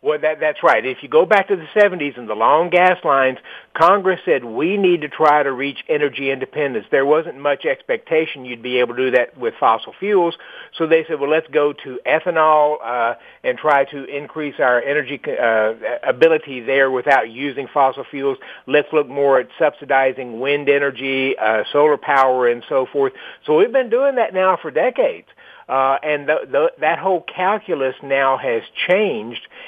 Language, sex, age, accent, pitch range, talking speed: English, male, 50-69, American, 135-180 Hz, 190 wpm